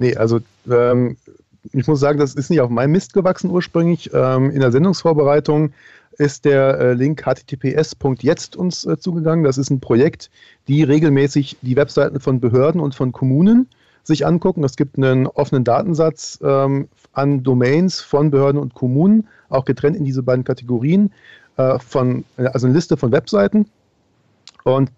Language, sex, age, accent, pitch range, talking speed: German, male, 40-59, German, 125-150 Hz, 160 wpm